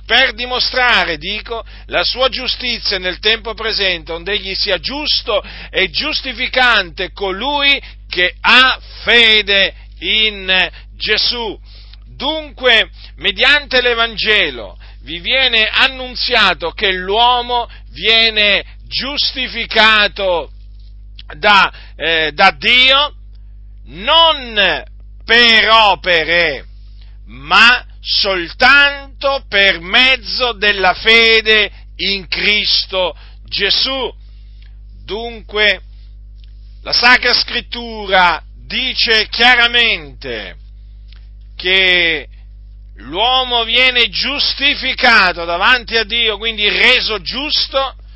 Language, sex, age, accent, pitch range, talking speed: Italian, male, 50-69, native, 175-245 Hz, 80 wpm